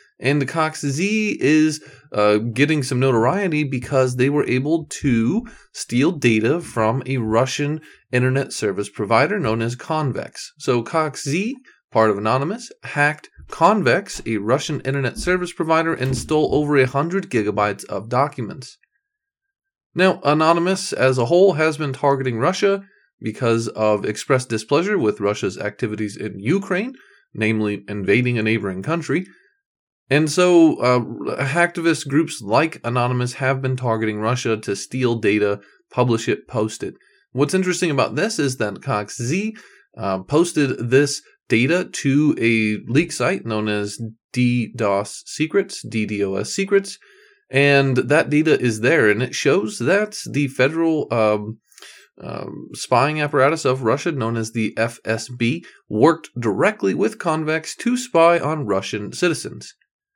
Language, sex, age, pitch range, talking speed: English, male, 30-49, 115-160 Hz, 135 wpm